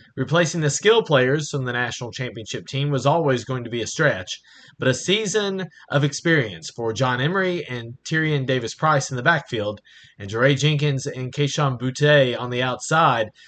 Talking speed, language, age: 175 wpm, English, 30-49